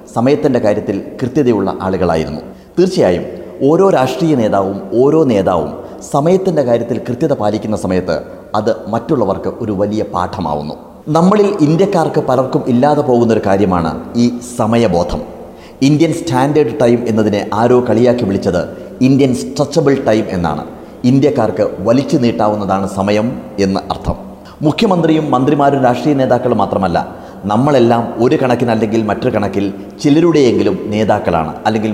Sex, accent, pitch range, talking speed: male, native, 100-135 Hz, 105 wpm